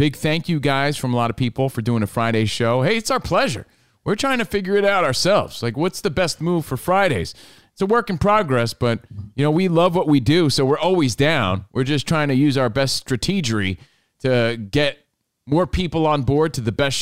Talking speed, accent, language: 235 wpm, American, English